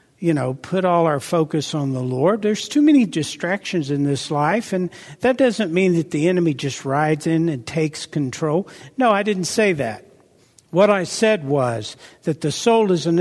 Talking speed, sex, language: 195 wpm, male, English